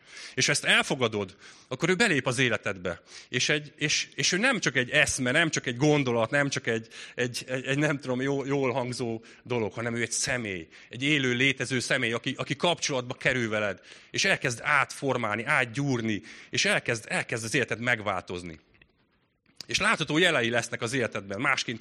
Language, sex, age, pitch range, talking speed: Hungarian, male, 30-49, 125-170 Hz, 170 wpm